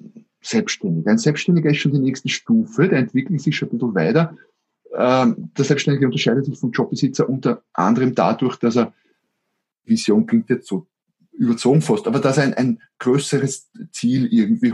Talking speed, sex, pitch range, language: 165 wpm, male, 135-225 Hz, German